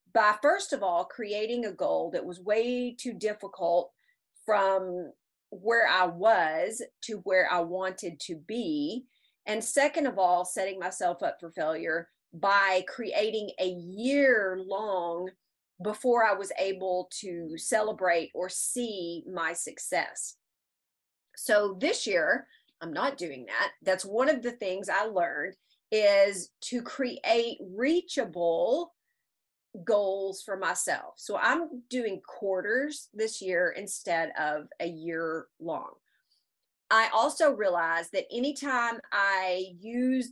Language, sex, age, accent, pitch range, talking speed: English, female, 40-59, American, 180-245 Hz, 125 wpm